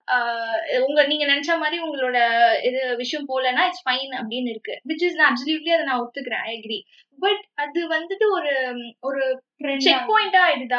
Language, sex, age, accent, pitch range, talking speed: Tamil, female, 20-39, native, 250-335 Hz, 90 wpm